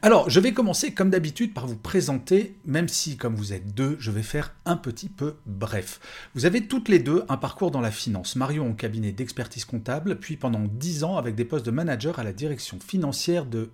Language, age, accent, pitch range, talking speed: French, 40-59, French, 115-180 Hz, 225 wpm